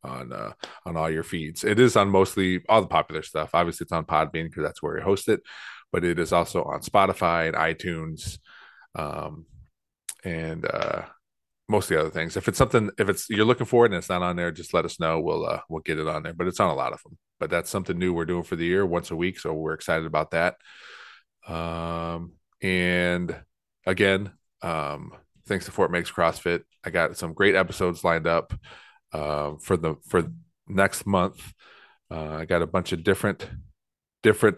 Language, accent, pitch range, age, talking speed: English, American, 80-95 Hz, 30-49, 205 wpm